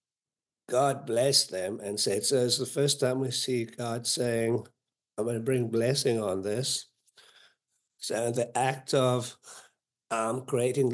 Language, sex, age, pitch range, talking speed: English, male, 60-79, 115-130 Hz, 150 wpm